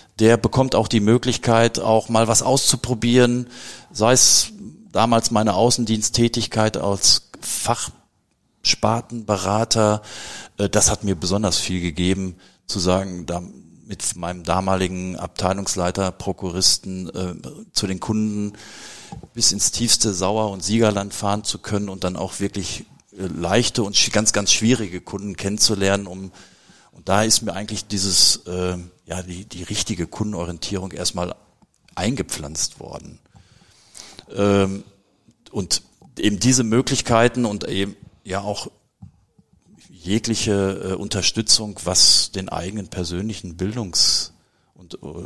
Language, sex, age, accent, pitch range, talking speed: German, male, 40-59, German, 90-110 Hz, 110 wpm